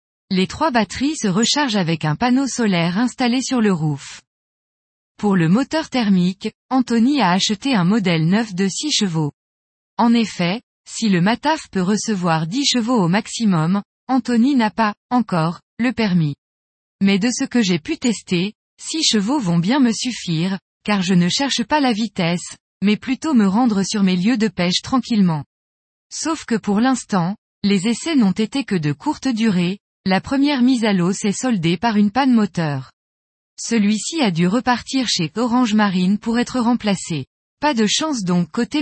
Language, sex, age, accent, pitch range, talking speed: French, female, 20-39, French, 180-245 Hz, 170 wpm